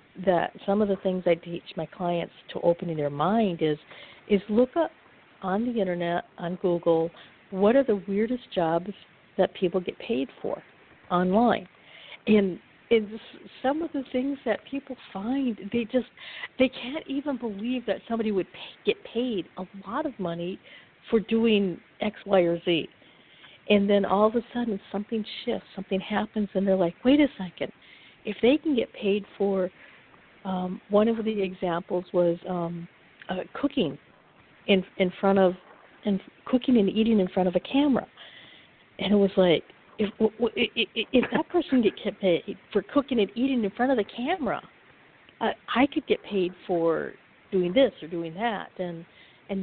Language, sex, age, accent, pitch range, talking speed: English, female, 60-79, American, 180-230 Hz, 170 wpm